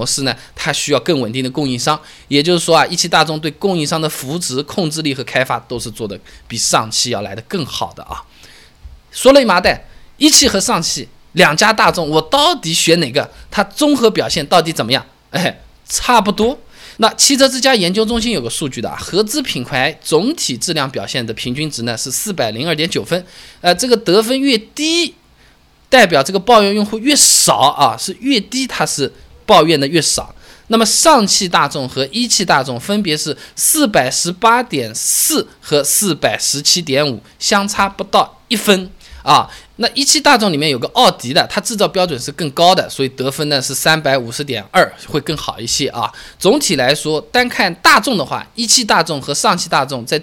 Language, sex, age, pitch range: Chinese, male, 20-39, 140-215 Hz